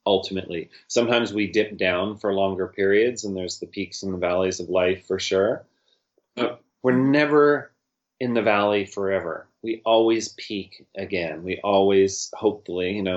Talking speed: 160 wpm